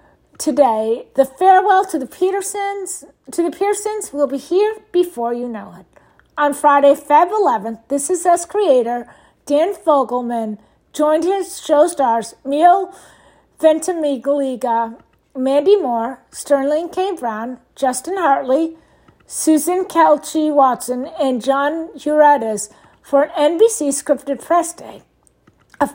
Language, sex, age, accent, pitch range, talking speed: English, female, 50-69, American, 250-345 Hz, 120 wpm